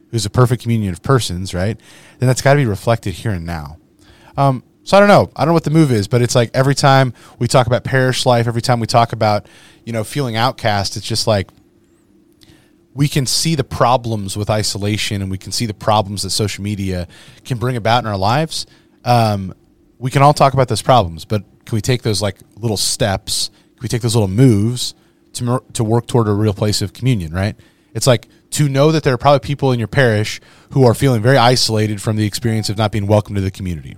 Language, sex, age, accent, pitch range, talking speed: English, male, 30-49, American, 95-125 Hz, 235 wpm